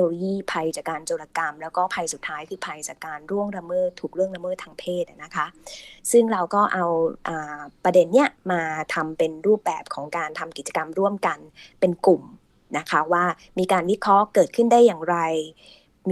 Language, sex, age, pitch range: Thai, female, 20-39, 170-215 Hz